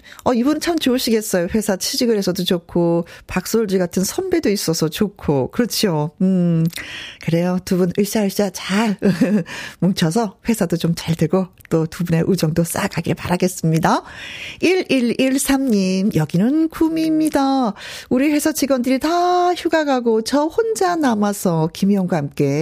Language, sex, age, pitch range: Korean, female, 40-59, 180-255 Hz